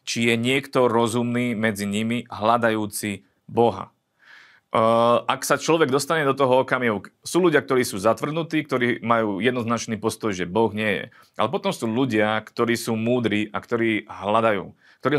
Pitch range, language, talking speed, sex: 105-125 Hz, Slovak, 155 wpm, male